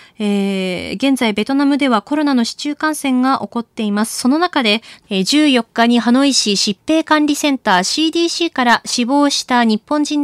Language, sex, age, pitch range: Japanese, female, 20-39, 225-275 Hz